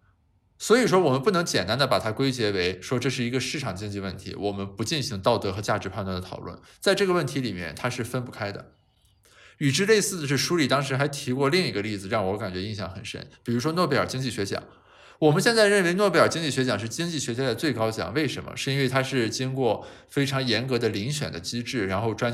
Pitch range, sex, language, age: 105-145 Hz, male, Chinese, 20-39